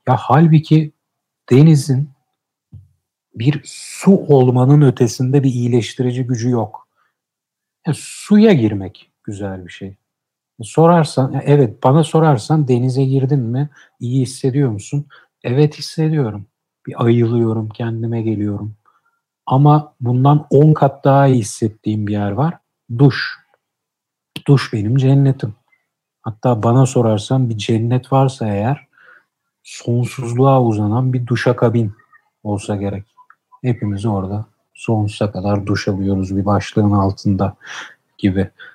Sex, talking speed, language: male, 115 wpm, Turkish